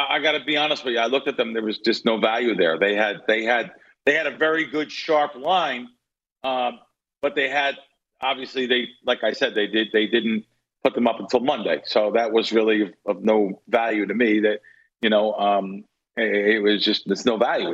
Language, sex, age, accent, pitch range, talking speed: English, male, 50-69, American, 120-160 Hz, 225 wpm